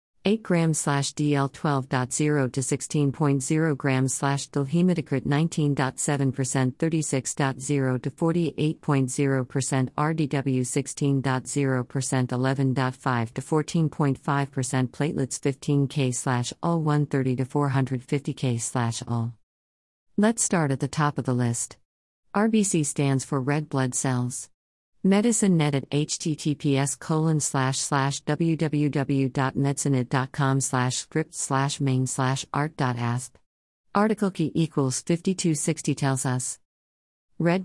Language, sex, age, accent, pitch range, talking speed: English, female, 50-69, American, 130-160 Hz, 85 wpm